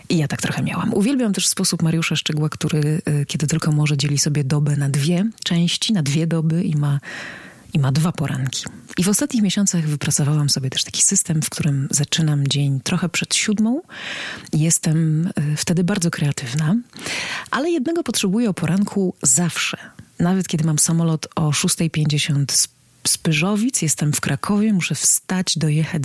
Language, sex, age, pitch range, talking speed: Polish, female, 30-49, 150-185 Hz, 155 wpm